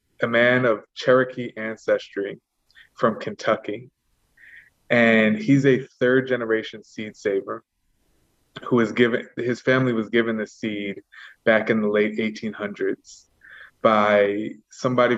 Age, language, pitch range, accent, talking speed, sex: 20-39, English, 105-120 Hz, American, 120 wpm, male